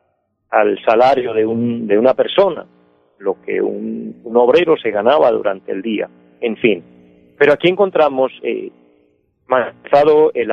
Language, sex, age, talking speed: Spanish, male, 40-59, 135 wpm